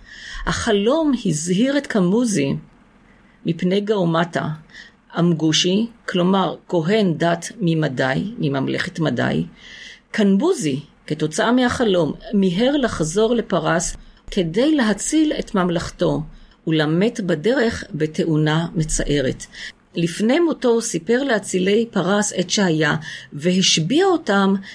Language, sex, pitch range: Hebrew, female, 170-230 Hz